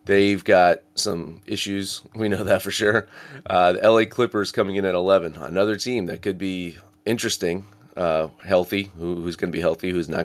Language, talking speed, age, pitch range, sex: English, 195 wpm, 30-49, 90-105 Hz, male